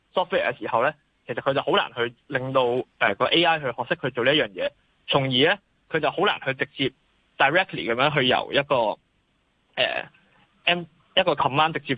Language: Chinese